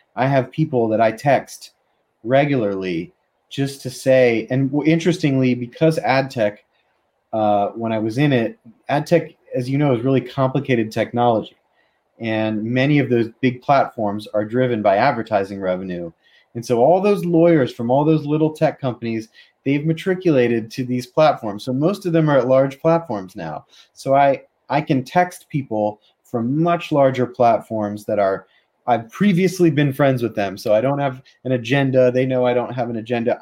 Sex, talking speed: male, 175 wpm